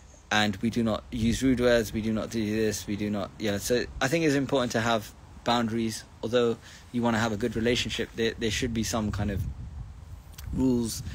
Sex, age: male, 20-39